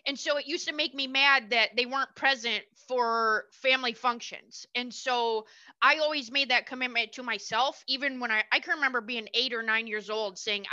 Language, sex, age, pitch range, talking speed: English, female, 20-39, 220-275 Hz, 205 wpm